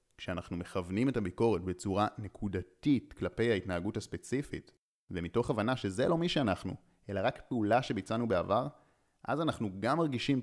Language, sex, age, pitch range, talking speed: Hebrew, male, 30-49, 95-120 Hz, 140 wpm